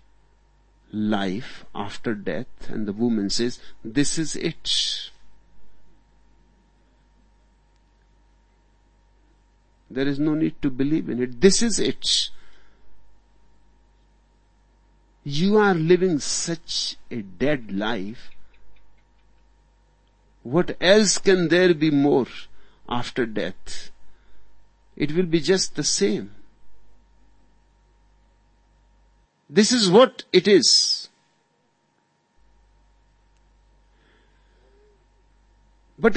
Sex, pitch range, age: male, 115-190 Hz, 60-79